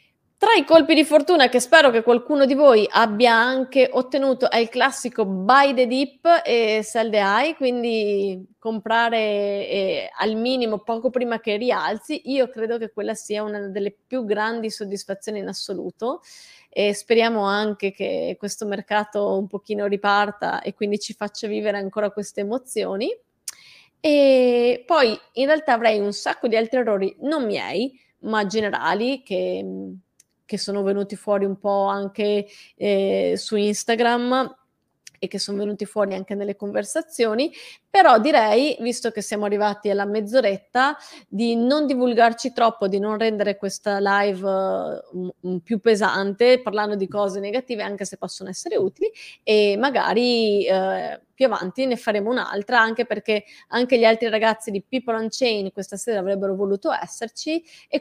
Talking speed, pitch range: 150 wpm, 205-250 Hz